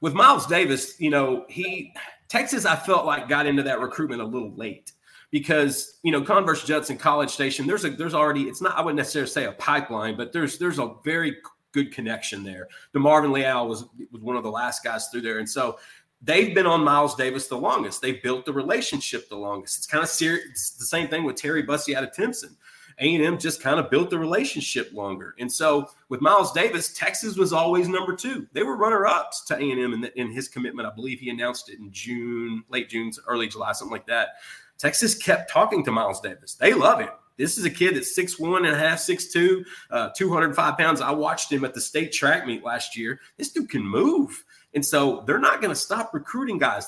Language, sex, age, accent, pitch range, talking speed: English, male, 30-49, American, 130-170 Hz, 220 wpm